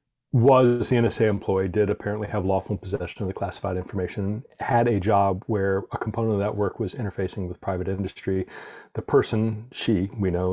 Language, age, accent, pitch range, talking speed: English, 40-59, American, 90-105 Hz, 180 wpm